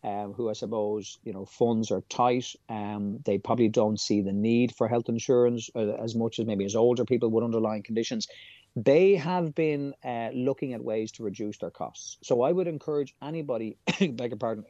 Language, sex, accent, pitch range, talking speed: English, male, Irish, 110-140 Hz, 195 wpm